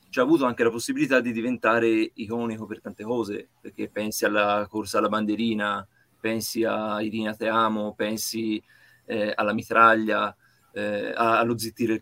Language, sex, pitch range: Italian, male, 110-125 Hz